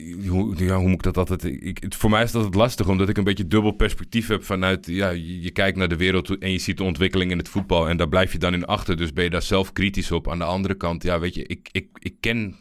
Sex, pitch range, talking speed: male, 85-100 Hz, 285 wpm